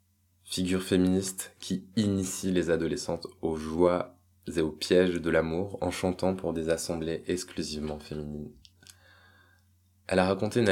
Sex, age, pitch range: male, 20-39, 85-95 Hz